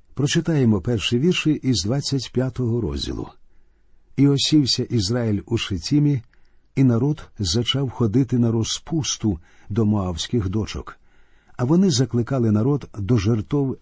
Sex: male